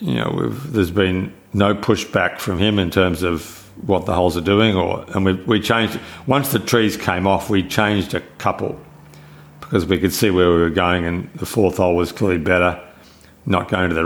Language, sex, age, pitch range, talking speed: English, male, 60-79, 90-110 Hz, 220 wpm